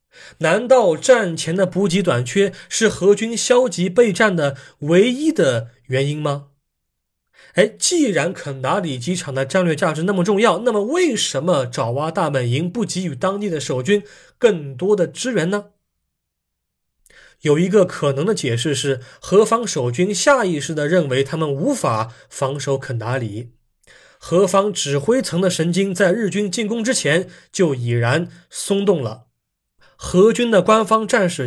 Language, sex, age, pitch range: Chinese, male, 20-39, 140-205 Hz